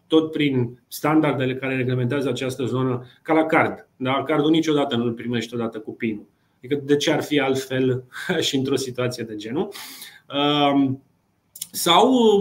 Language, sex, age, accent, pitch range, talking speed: Romanian, male, 30-49, native, 130-170 Hz, 150 wpm